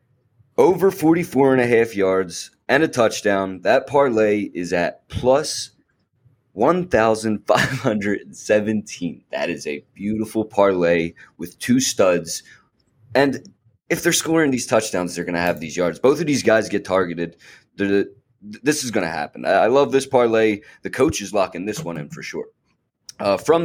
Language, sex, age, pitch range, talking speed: English, male, 20-39, 100-130 Hz, 155 wpm